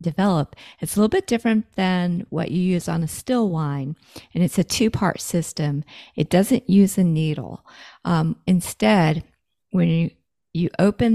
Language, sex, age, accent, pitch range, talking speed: English, female, 50-69, American, 155-185 Hz, 160 wpm